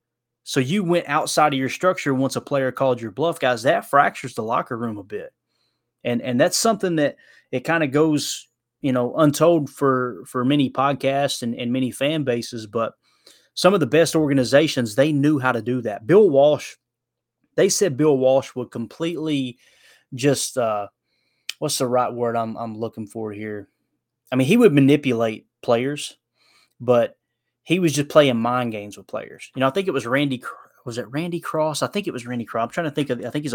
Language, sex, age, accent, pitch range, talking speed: English, male, 20-39, American, 120-145 Hz, 200 wpm